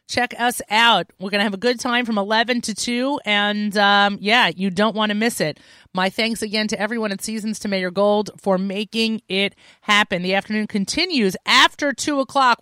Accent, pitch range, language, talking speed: American, 205-245 Hz, English, 205 wpm